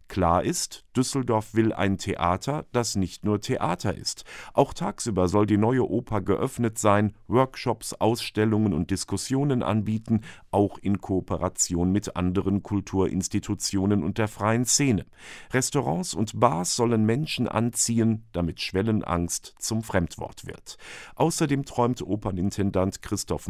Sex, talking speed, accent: male, 125 wpm, German